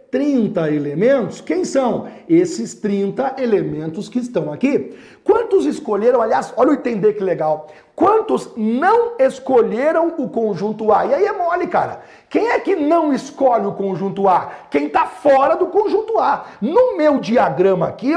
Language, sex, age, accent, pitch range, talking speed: Portuguese, male, 50-69, Brazilian, 205-335 Hz, 155 wpm